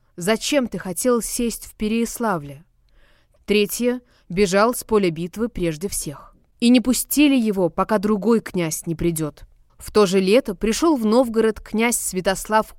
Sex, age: female, 20-39